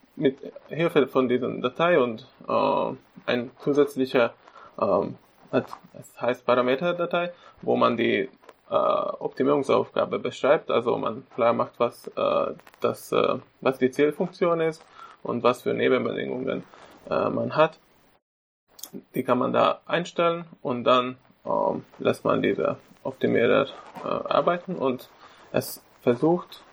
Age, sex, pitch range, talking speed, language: 20-39, male, 125-160 Hz, 125 wpm, German